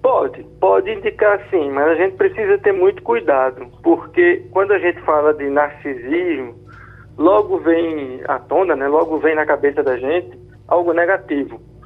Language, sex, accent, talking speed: Portuguese, male, Brazilian, 155 wpm